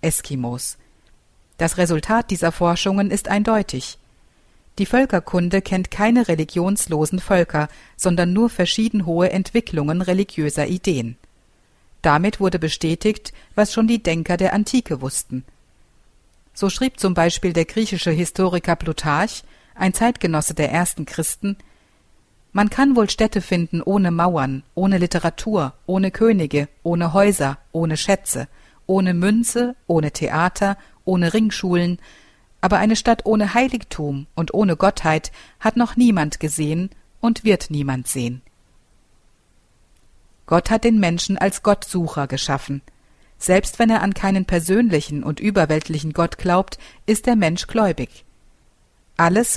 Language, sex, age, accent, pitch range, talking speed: German, female, 50-69, German, 160-205 Hz, 125 wpm